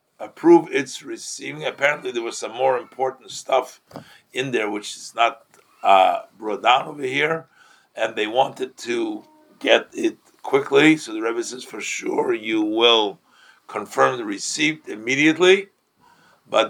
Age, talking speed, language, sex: 50-69, 145 wpm, English, male